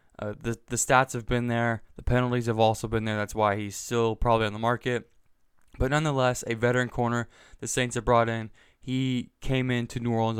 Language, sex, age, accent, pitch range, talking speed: English, male, 20-39, American, 115-130 Hz, 210 wpm